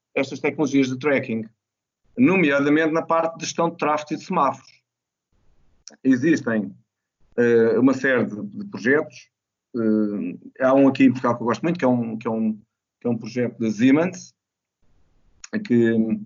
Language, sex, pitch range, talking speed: Portuguese, male, 115-145 Hz, 130 wpm